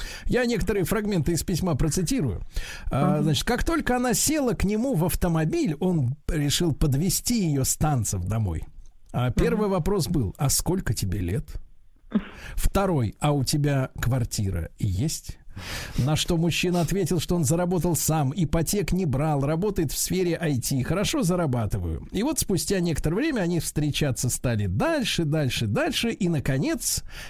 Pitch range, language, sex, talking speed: 135-210 Hz, Russian, male, 140 wpm